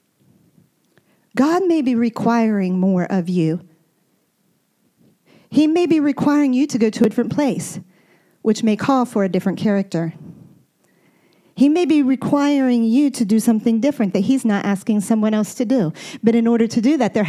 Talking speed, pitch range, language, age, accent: 170 wpm, 200-275 Hz, English, 40-59, American